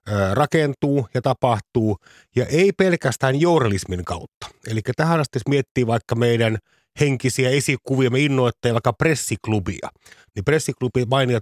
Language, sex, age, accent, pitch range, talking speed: Finnish, male, 30-49, native, 110-135 Hz, 115 wpm